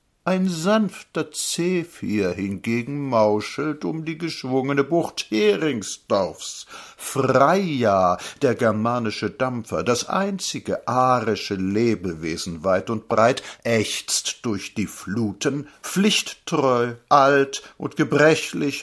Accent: German